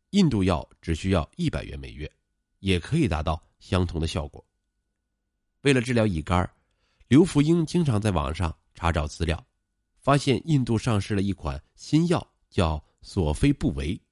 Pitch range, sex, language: 85-115 Hz, male, Chinese